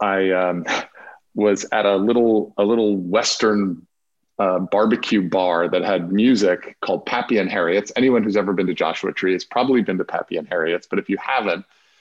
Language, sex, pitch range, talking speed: English, male, 90-105 Hz, 185 wpm